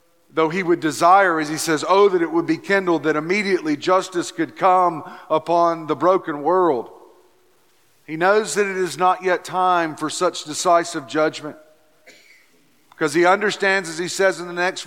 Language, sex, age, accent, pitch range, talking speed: English, male, 50-69, American, 140-175 Hz, 175 wpm